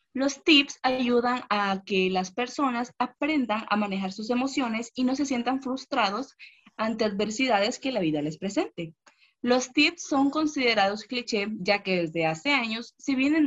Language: Spanish